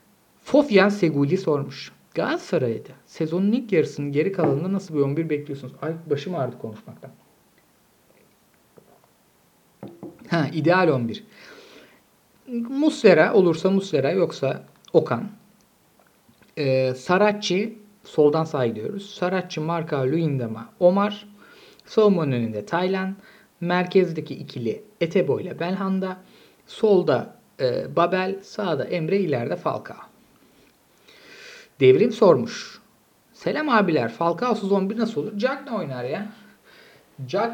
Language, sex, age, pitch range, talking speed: Turkish, male, 50-69, 150-215 Hz, 100 wpm